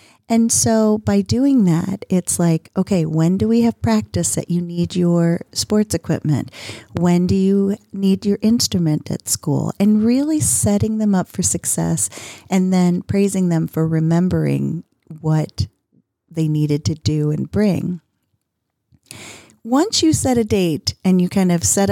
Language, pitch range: English, 160-210 Hz